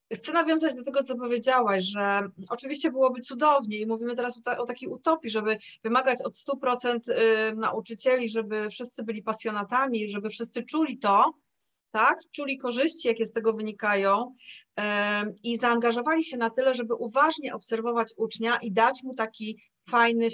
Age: 30-49